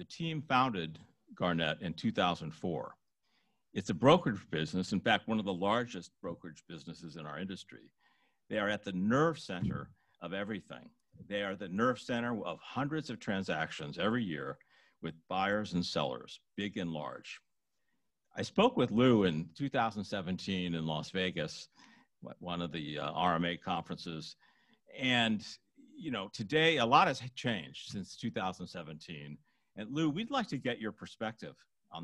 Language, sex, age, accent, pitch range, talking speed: English, male, 50-69, American, 90-140 Hz, 150 wpm